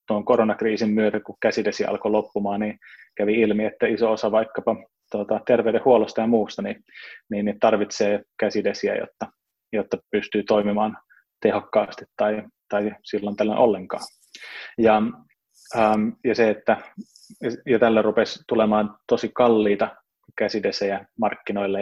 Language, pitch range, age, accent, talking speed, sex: Finnish, 105-115 Hz, 20-39, native, 125 wpm, male